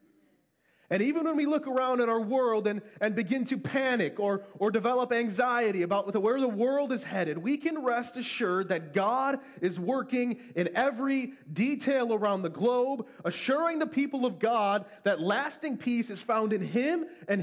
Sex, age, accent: male, 30-49, American